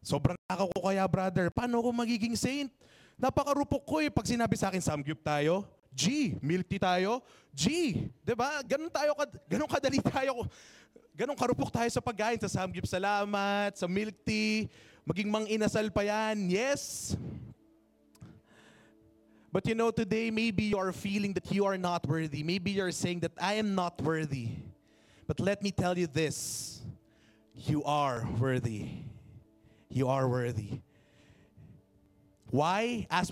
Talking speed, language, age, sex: 140 wpm, English, 20-39, male